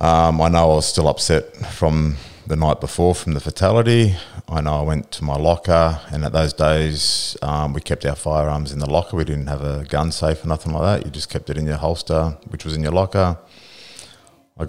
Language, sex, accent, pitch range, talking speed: English, male, Australian, 75-85 Hz, 230 wpm